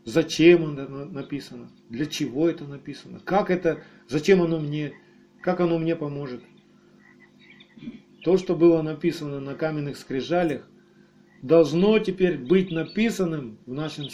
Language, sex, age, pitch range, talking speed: Russian, male, 40-59, 150-185 Hz, 115 wpm